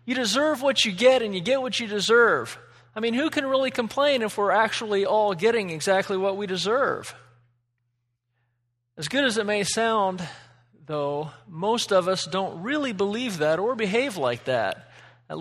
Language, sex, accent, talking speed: English, male, American, 175 wpm